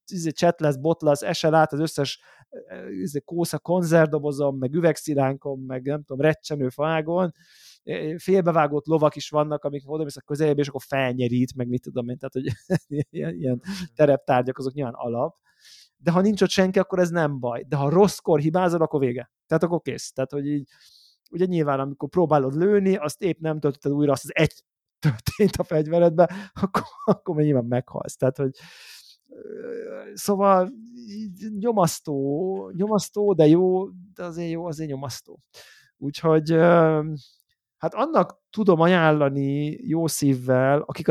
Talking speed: 145 wpm